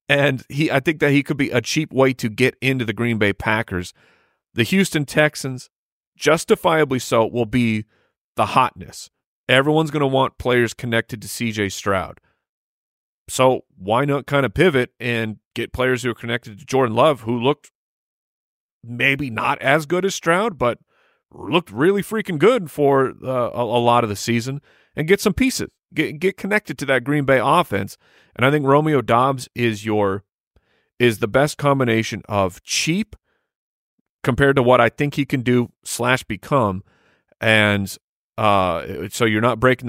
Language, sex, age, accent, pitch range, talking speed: English, male, 30-49, American, 110-145 Hz, 165 wpm